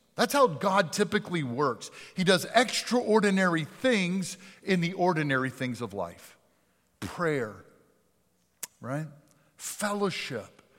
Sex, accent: male, American